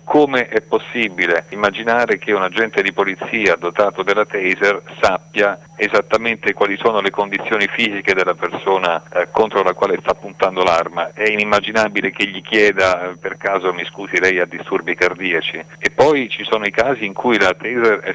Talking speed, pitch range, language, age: 170 wpm, 85-110 Hz, Italian, 40-59